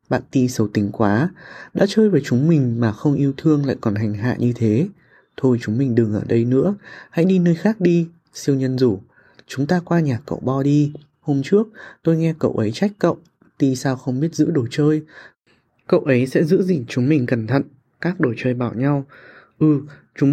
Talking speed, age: 215 wpm, 20-39